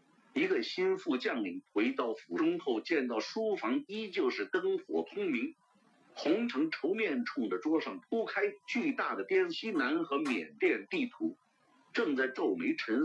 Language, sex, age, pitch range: Chinese, male, 50-69, 265-370 Hz